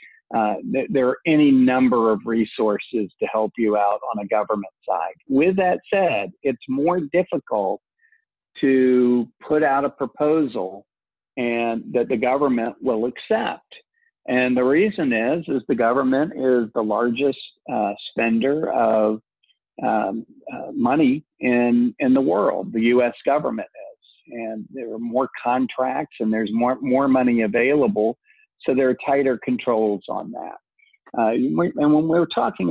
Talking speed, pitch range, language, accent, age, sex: 150 wpm, 110-150 Hz, English, American, 50-69, male